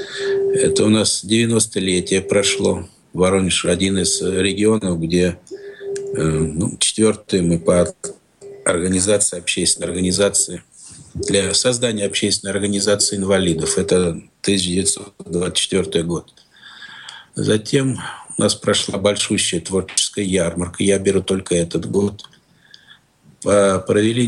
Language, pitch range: Russian, 90-105 Hz